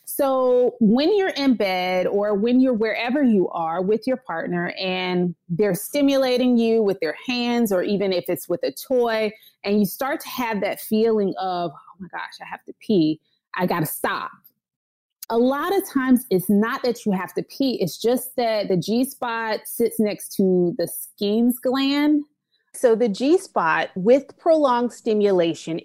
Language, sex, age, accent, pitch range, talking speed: English, female, 30-49, American, 185-255 Hz, 175 wpm